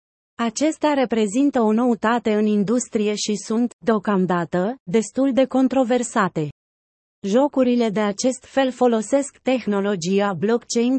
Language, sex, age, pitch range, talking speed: Romanian, female, 30-49, 205-255 Hz, 105 wpm